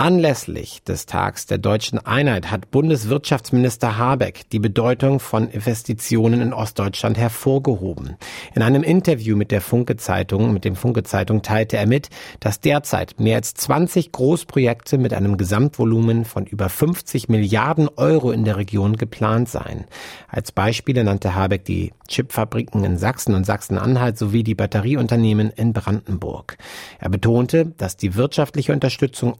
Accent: German